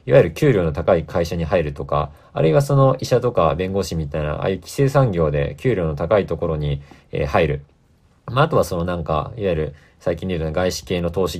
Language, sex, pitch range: Japanese, male, 80-130 Hz